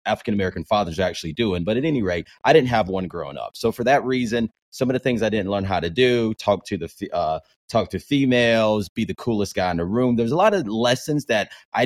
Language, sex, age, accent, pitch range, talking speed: English, male, 30-49, American, 100-125 Hz, 255 wpm